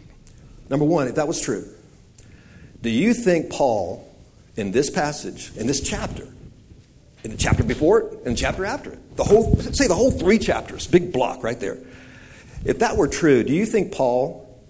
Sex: male